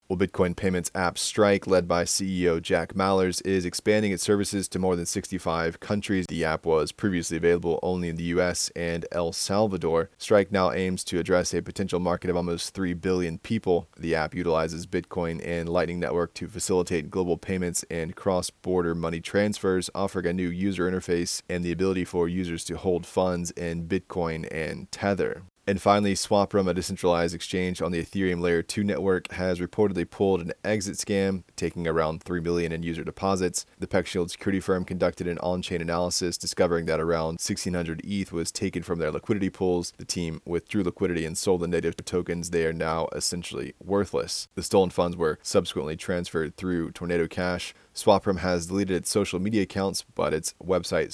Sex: male